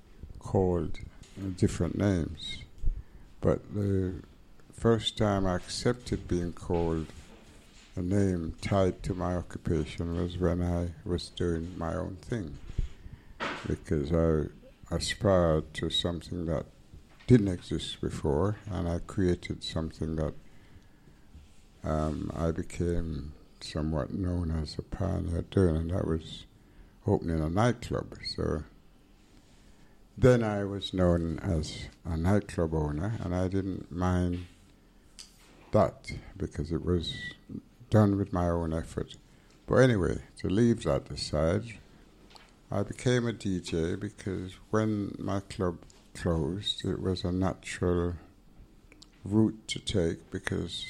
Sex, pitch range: male, 80-100 Hz